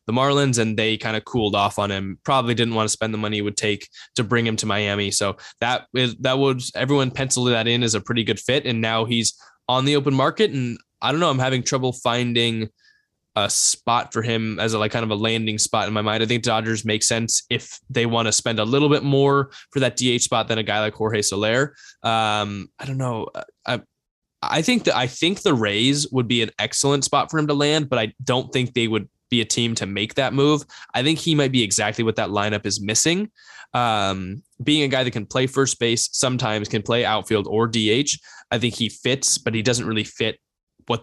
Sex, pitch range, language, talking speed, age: male, 110-135 Hz, English, 240 wpm, 10-29